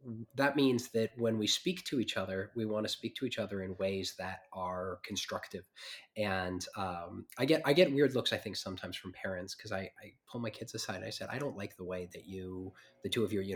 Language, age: English, 20-39